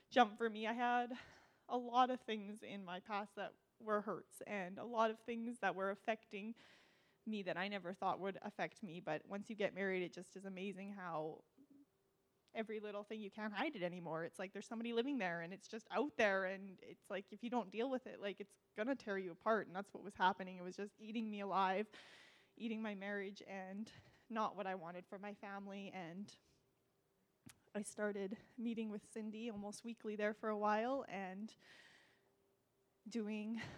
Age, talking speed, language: 10-29, 195 wpm, English